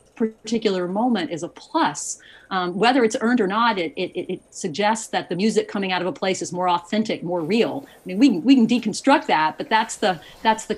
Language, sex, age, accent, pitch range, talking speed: English, female, 40-59, American, 170-220 Hz, 225 wpm